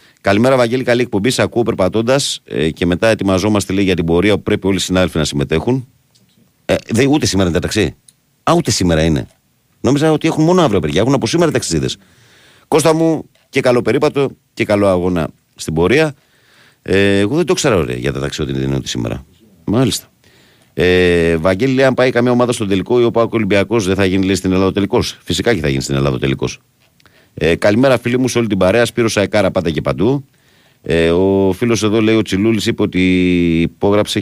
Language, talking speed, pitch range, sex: Greek, 205 wpm, 85-120 Hz, male